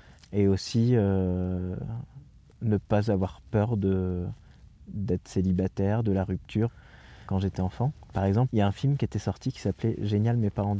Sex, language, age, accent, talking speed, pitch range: male, French, 20-39, French, 180 wpm, 95-115 Hz